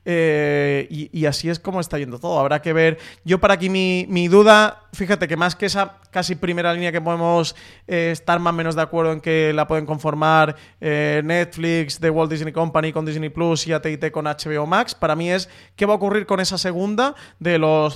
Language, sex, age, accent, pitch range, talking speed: Spanish, male, 20-39, Spanish, 150-175 Hz, 220 wpm